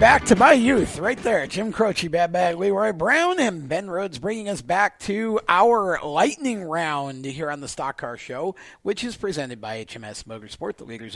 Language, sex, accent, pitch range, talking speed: English, male, American, 135-200 Hz, 195 wpm